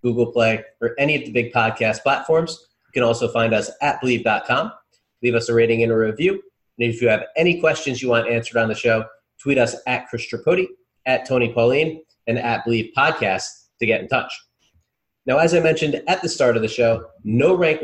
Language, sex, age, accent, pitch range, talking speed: English, male, 30-49, American, 115-150 Hz, 210 wpm